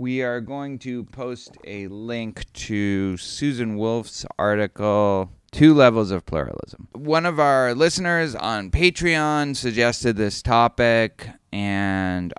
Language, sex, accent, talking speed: English, male, American, 120 wpm